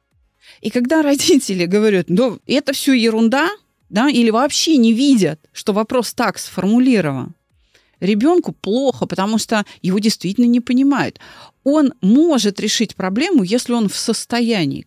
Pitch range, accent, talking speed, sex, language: 180-255 Hz, native, 135 wpm, female, Russian